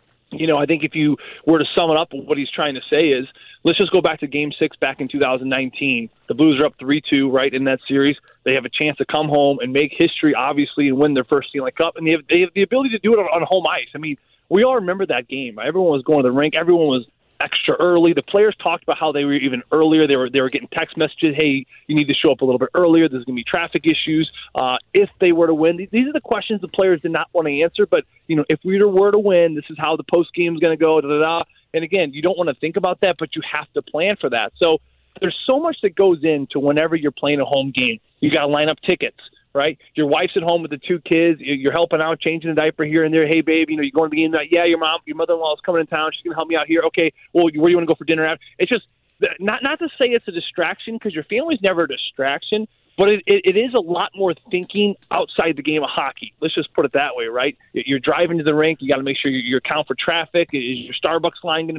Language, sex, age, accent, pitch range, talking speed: English, male, 20-39, American, 145-180 Hz, 285 wpm